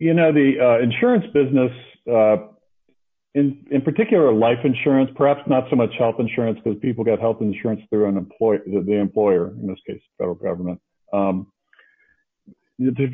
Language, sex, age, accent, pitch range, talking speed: English, male, 50-69, American, 105-140 Hz, 165 wpm